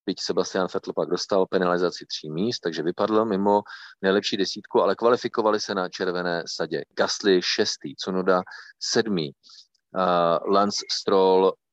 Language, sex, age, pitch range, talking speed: Czech, male, 30-49, 95-110 Hz, 135 wpm